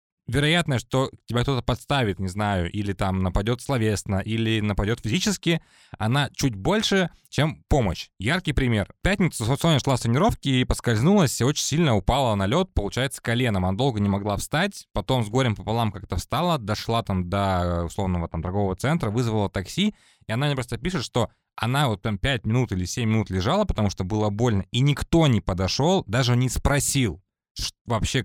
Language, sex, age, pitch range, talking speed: Russian, male, 20-39, 100-140 Hz, 180 wpm